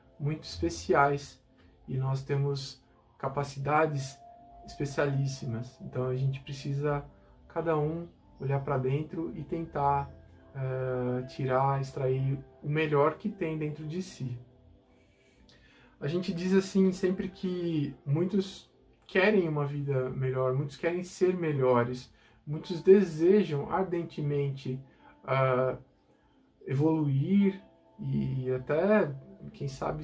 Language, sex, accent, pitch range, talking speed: Portuguese, male, Brazilian, 130-180 Hz, 100 wpm